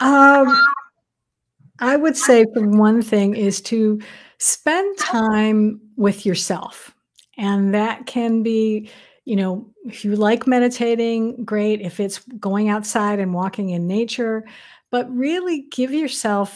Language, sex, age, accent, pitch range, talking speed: English, female, 50-69, American, 200-250 Hz, 130 wpm